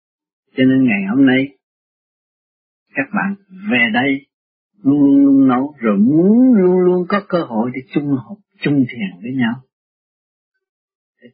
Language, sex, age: Vietnamese, male, 60-79